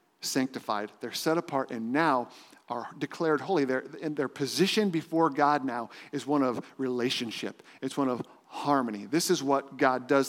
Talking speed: 155 wpm